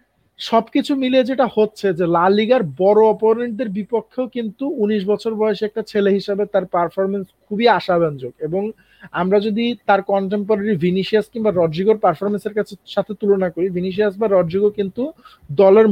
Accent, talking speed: native, 40 wpm